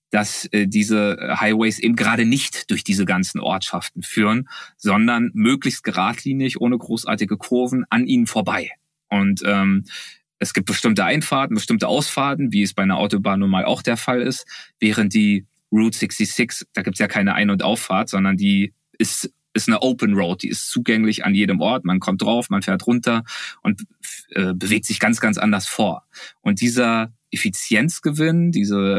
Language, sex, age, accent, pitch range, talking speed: German, male, 30-49, German, 105-140 Hz, 170 wpm